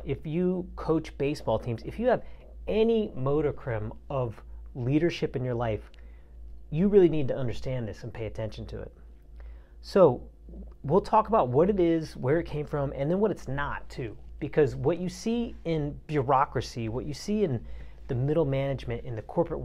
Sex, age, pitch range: male, 40-59, 115-165 Hz